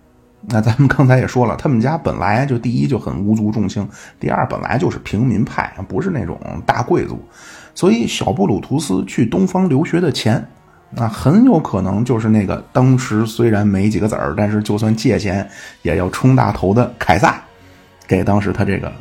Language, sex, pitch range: Chinese, male, 95-125 Hz